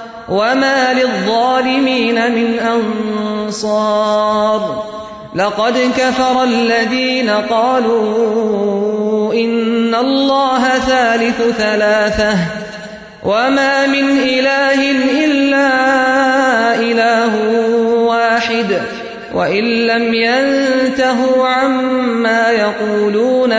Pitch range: 215-255 Hz